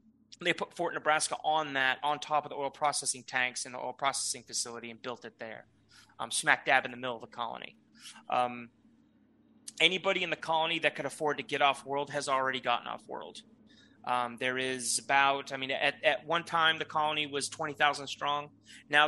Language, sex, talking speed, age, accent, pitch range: English, male, 200 wpm, 30-49, American, 125-155 Hz